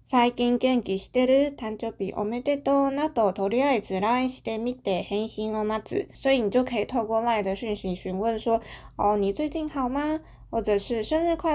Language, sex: Chinese, female